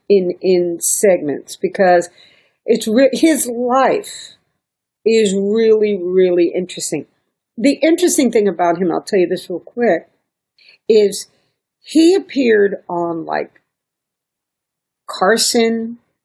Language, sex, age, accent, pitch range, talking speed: English, female, 50-69, American, 180-260 Hz, 105 wpm